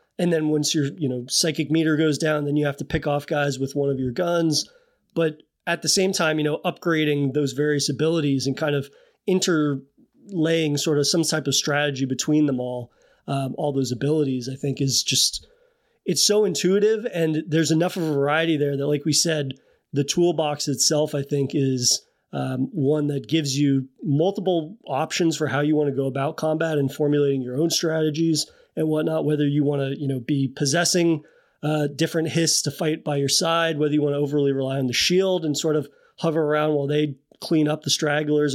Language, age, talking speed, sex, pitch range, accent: English, 30-49, 205 wpm, male, 140-160 Hz, American